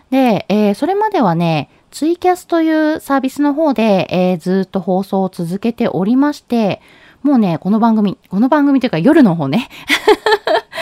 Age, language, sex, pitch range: 20-39, Japanese, female, 180-275 Hz